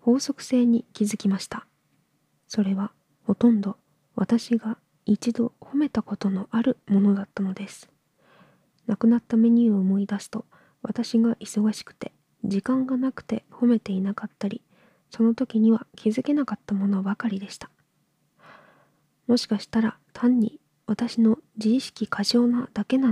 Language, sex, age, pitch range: Japanese, female, 20-39, 210-235 Hz